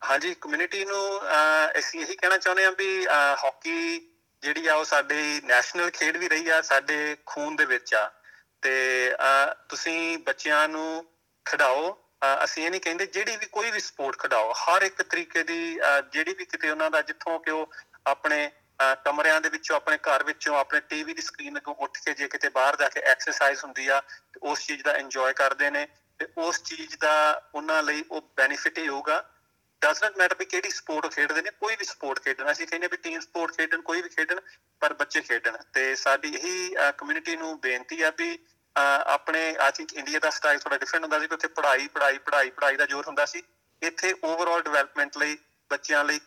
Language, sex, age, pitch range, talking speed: Punjabi, male, 30-49, 145-195 Hz, 190 wpm